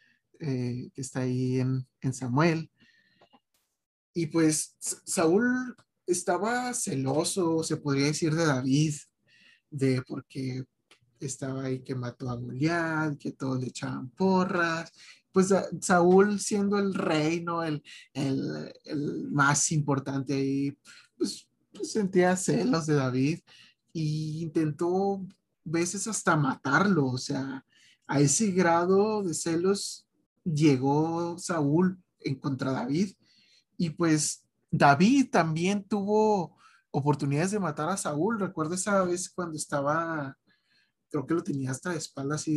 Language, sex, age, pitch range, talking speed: Spanish, male, 30-49, 135-180 Hz, 125 wpm